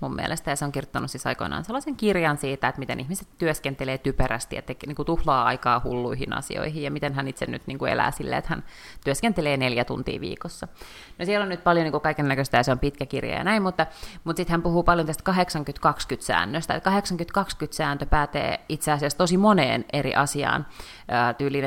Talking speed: 190 wpm